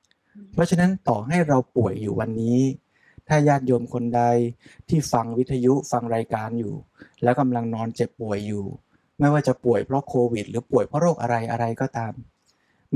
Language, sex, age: Thai, male, 20-39